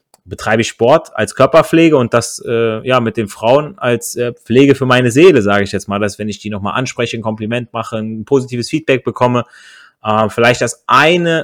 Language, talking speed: German, 205 wpm